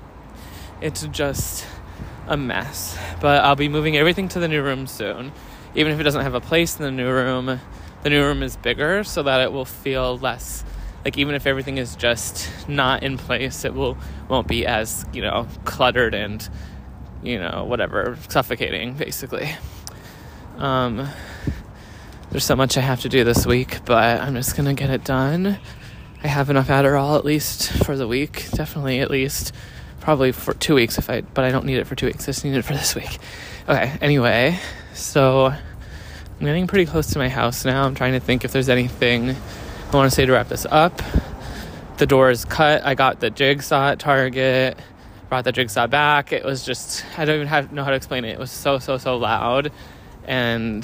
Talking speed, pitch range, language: 200 wpm, 120-140 Hz, English